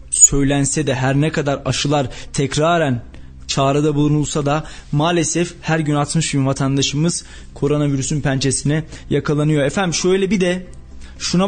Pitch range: 145-185 Hz